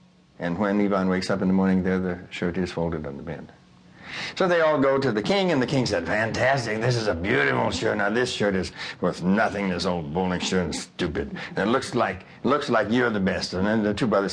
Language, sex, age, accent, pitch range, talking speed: English, male, 60-79, American, 90-125 Hz, 250 wpm